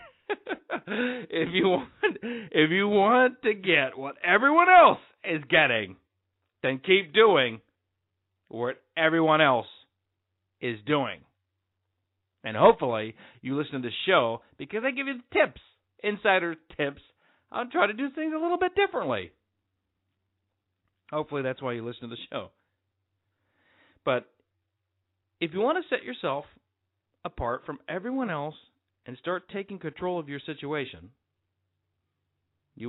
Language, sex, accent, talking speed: English, male, American, 130 wpm